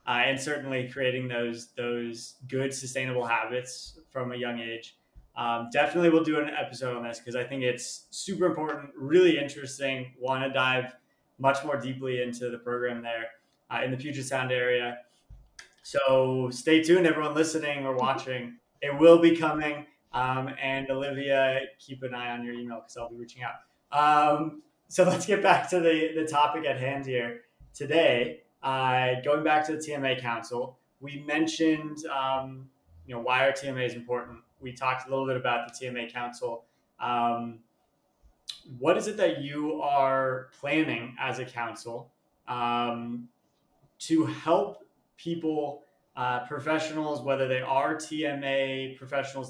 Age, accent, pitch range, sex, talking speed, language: 20-39, American, 125-150 Hz, male, 160 wpm, English